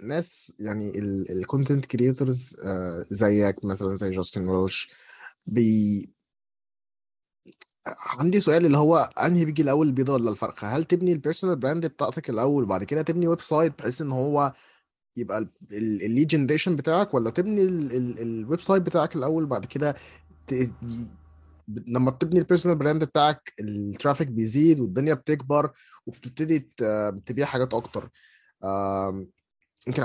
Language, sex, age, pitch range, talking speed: Arabic, male, 20-39, 110-160 Hz, 120 wpm